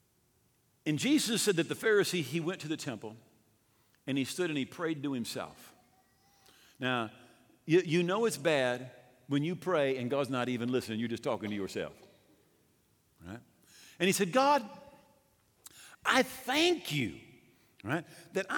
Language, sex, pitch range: English, male, 120-175 Hz